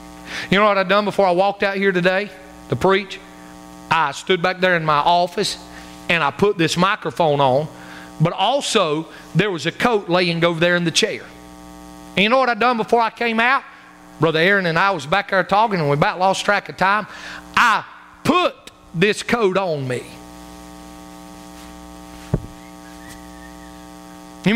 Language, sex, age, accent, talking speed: English, male, 40-59, American, 170 wpm